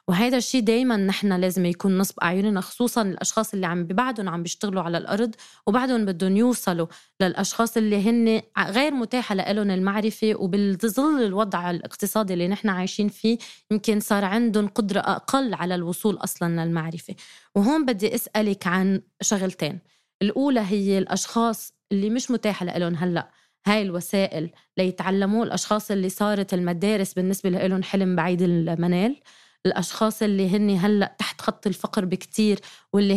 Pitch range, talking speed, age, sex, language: 185-220 Hz, 140 wpm, 20-39, female, Arabic